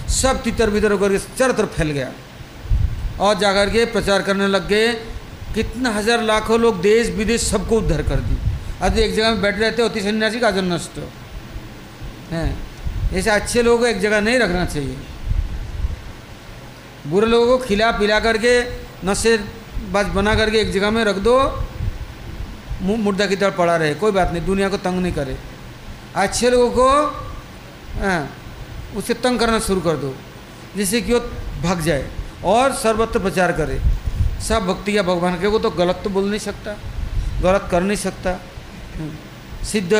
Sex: male